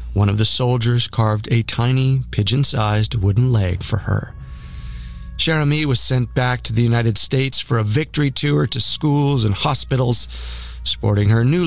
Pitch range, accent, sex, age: 105-130 Hz, American, male, 30-49